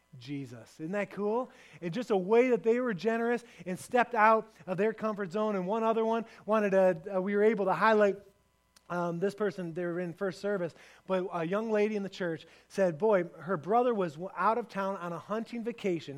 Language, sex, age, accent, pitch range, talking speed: English, male, 30-49, American, 165-220 Hz, 215 wpm